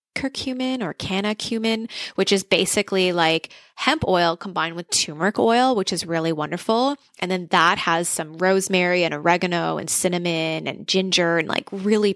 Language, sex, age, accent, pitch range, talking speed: English, female, 20-39, American, 180-215 Hz, 165 wpm